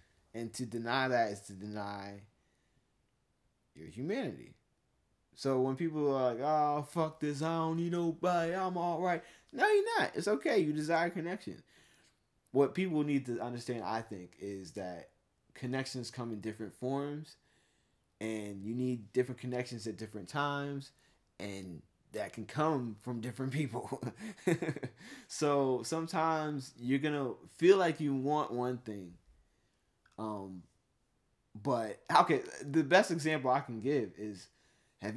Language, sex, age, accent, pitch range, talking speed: English, male, 20-39, American, 110-150 Hz, 140 wpm